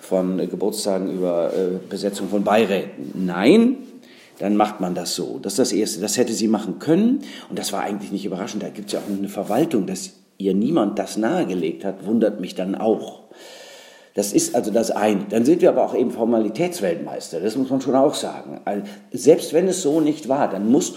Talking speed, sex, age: 205 wpm, male, 50-69